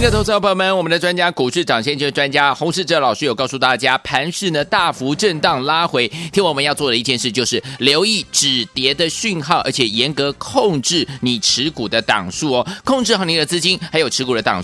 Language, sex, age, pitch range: Chinese, male, 30-49, 135-195 Hz